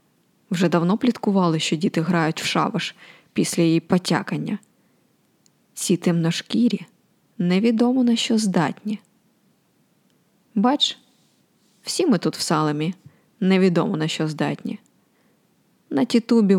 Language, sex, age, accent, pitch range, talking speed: Ukrainian, female, 20-39, native, 170-215 Hz, 105 wpm